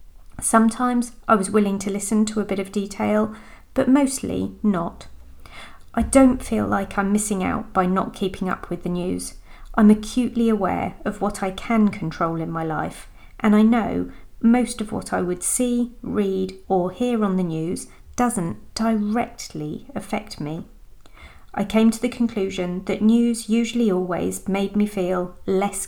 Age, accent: 40-59, British